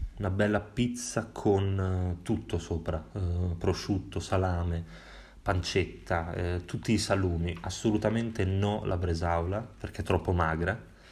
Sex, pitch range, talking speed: male, 90-105 Hz, 120 wpm